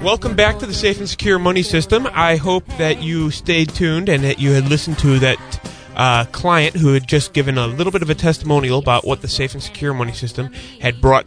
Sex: male